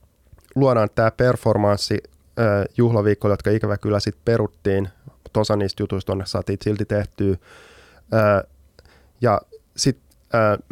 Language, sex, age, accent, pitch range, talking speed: Finnish, male, 20-39, native, 95-120 Hz, 110 wpm